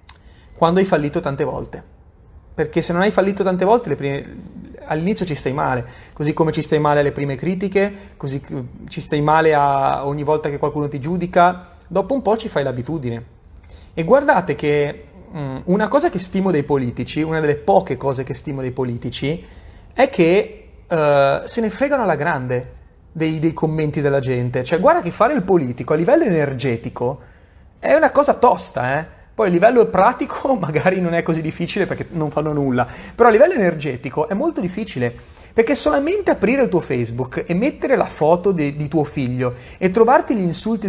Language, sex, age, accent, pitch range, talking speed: Italian, male, 30-49, native, 140-195 Hz, 185 wpm